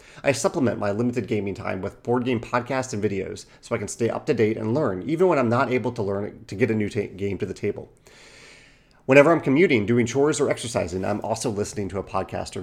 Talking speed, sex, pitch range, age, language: 240 wpm, male, 105-135 Hz, 30-49, English